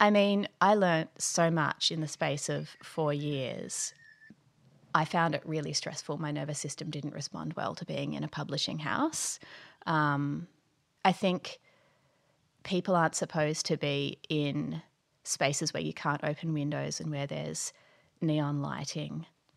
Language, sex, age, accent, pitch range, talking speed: English, female, 30-49, Australian, 150-170 Hz, 150 wpm